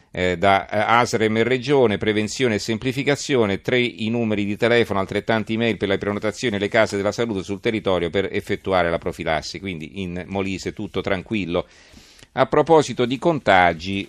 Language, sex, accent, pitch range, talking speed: Italian, male, native, 95-115 Hz, 160 wpm